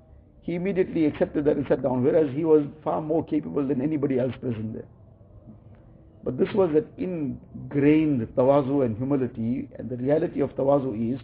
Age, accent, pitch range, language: 60-79, Indian, 120-150 Hz, English